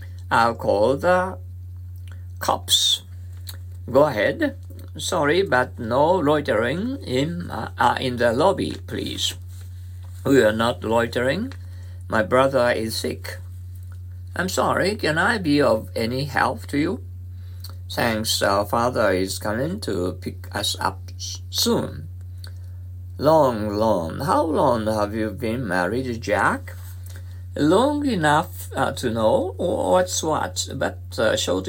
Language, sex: Japanese, male